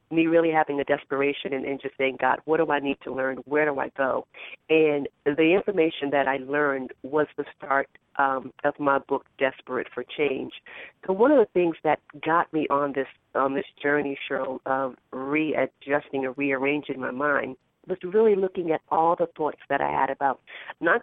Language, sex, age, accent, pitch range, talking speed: English, female, 40-59, American, 135-160 Hz, 195 wpm